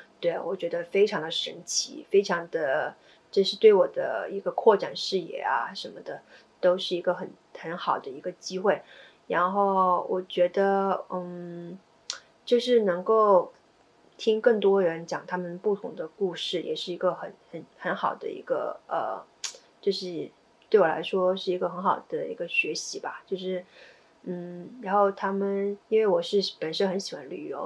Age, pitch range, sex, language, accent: 30-49, 180-245 Hz, female, Chinese, native